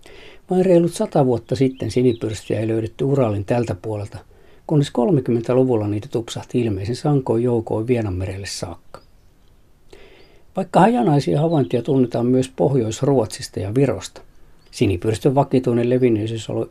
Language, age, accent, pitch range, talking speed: Finnish, 50-69, native, 105-130 Hz, 115 wpm